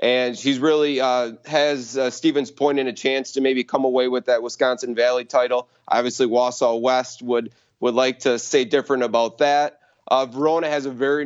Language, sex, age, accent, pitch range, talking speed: English, male, 30-49, American, 130-155 Hz, 185 wpm